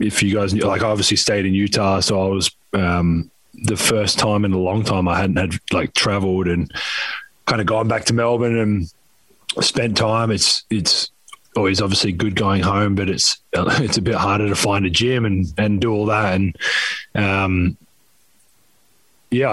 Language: English